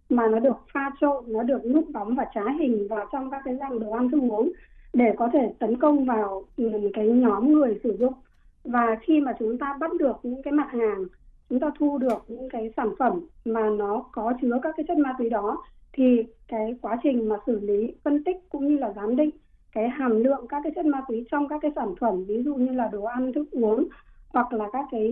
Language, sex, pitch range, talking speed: Vietnamese, female, 220-280 Hz, 240 wpm